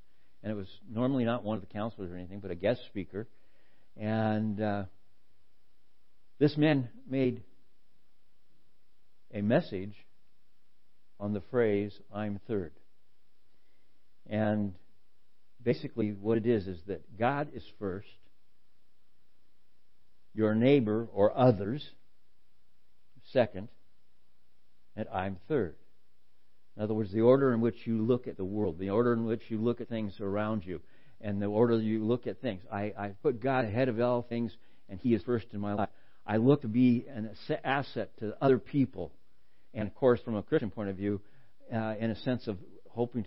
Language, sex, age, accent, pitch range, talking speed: English, male, 60-79, American, 95-120 Hz, 155 wpm